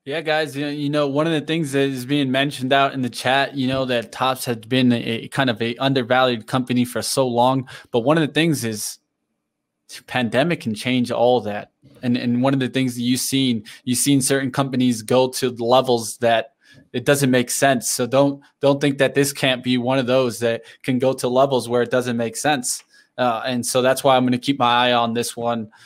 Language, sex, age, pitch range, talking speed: English, male, 20-39, 120-140 Hz, 225 wpm